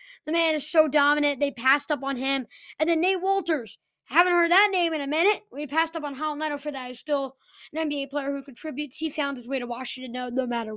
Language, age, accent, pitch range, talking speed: English, 20-39, American, 265-320 Hz, 250 wpm